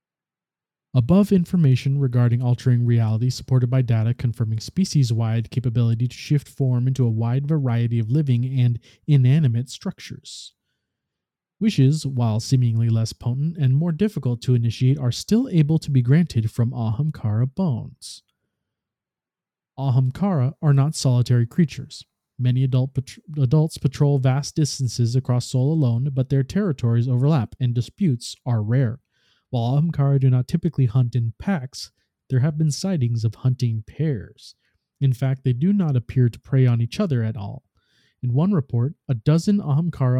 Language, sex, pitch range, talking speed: English, male, 120-150 Hz, 145 wpm